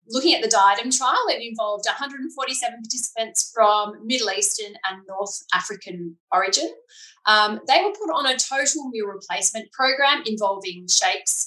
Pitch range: 200-310 Hz